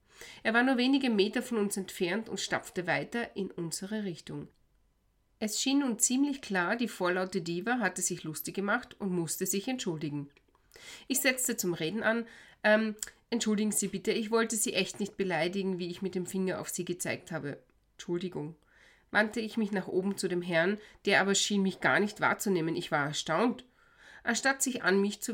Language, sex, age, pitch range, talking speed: German, female, 30-49, 180-235 Hz, 185 wpm